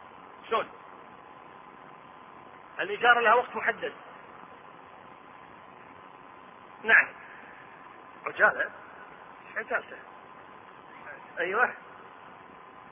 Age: 40-59